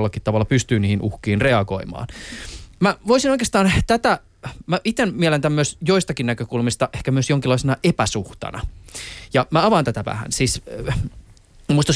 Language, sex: Finnish, male